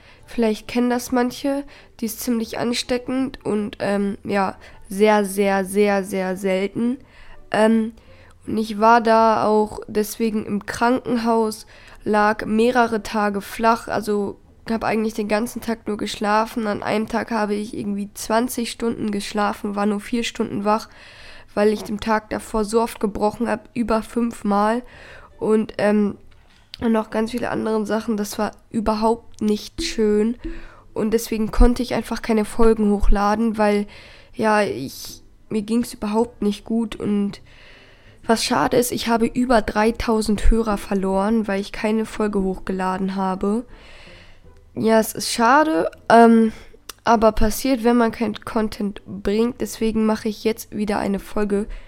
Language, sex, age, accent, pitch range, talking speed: German, female, 10-29, German, 205-230 Hz, 150 wpm